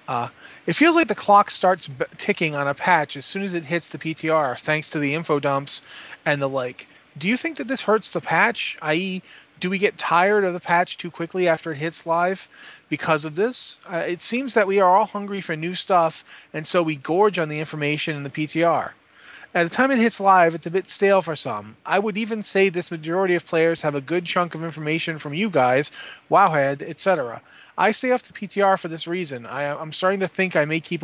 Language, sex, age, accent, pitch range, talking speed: English, male, 30-49, American, 150-190 Hz, 230 wpm